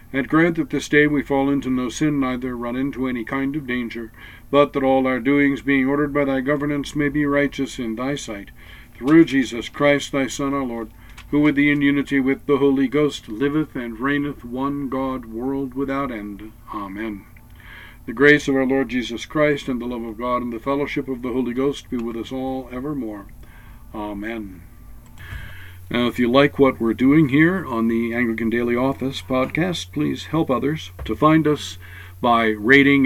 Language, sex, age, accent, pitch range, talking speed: English, male, 60-79, American, 110-140 Hz, 190 wpm